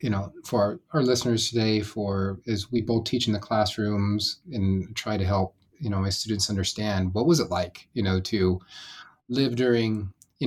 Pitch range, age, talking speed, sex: 95-120 Hz, 30-49, 190 wpm, male